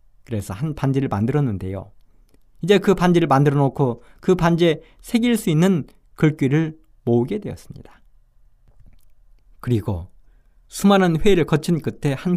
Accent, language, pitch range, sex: native, Korean, 110-185 Hz, male